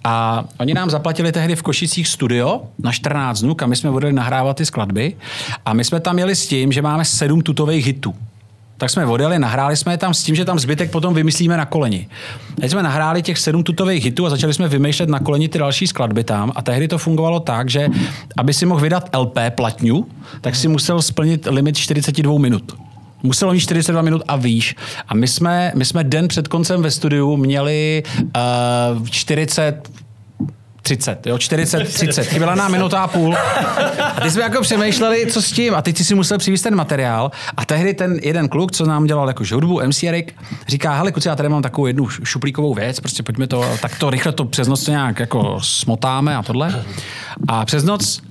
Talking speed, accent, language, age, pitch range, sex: 200 wpm, native, Czech, 40-59, 125-165 Hz, male